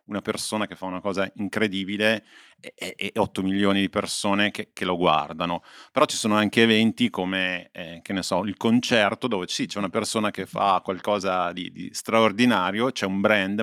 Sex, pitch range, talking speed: male, 95-115 Hz, 195 wpm